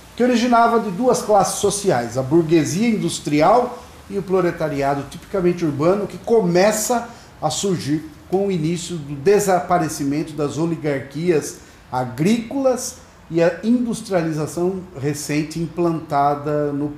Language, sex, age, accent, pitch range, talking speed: Portuguese, male, 40-59, Brazilian, 145-175 Hz, 110 wpm